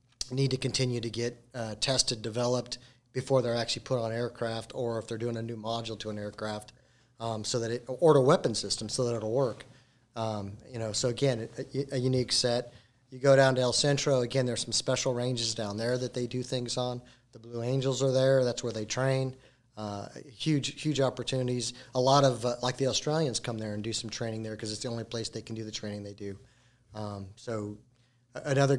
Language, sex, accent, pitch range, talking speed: English, male, American, 115-130 Hz, 220 wpm